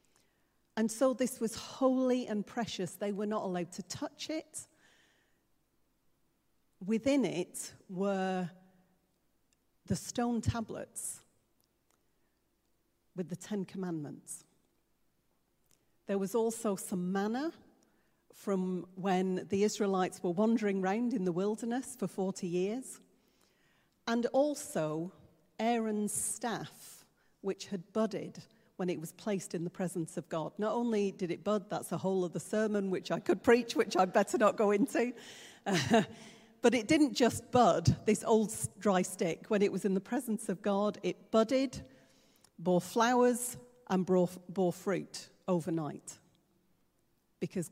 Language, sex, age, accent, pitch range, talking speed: English, female, 40-59, British, 180-225 Hz, 135 wpm